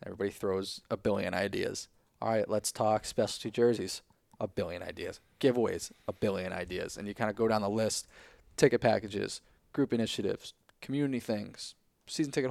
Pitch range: 105-120 Hz